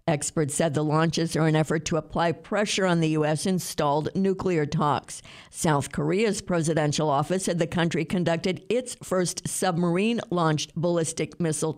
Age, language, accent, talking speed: 50-69, English, American, 145 wpm